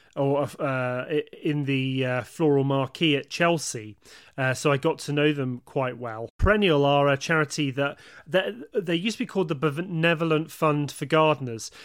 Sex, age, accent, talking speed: male, 30-49, British, 170 wpm